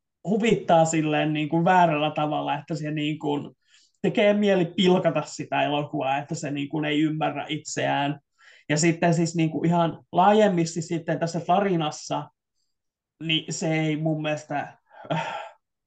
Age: 20-39